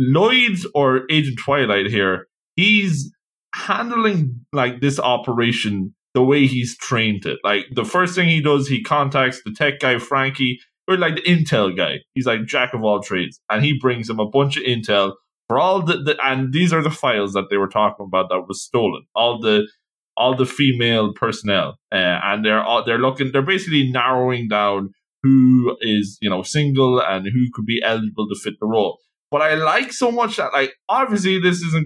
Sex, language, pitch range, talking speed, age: male, English, 115-155 Hz, 195 wpm, 20-39